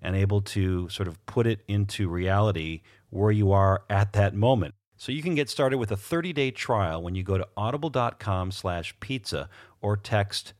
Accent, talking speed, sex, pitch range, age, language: American, 185 wpm, male, 90-110 Hz, 40-59, English